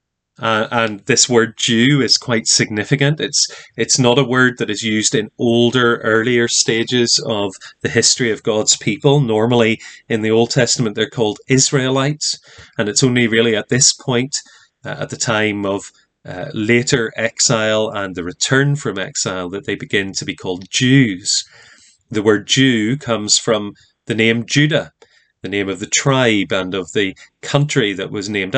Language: English